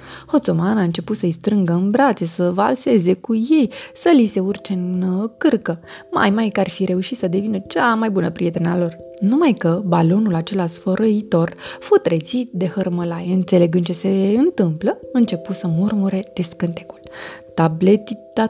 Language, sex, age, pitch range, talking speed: Romanian, female, 20-39, 180-230 Hz, 155 wpm